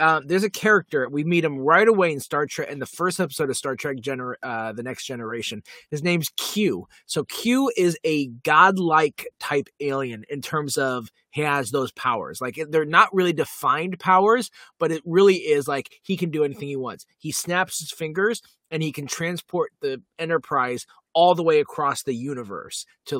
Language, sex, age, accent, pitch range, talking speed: English, male, 20-39, American, 135-180 Hz, 190 wpm